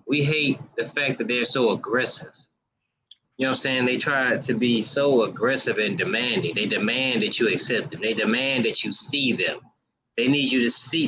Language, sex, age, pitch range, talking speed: English, male, 20-39, 120-140 Hz, 205 wpm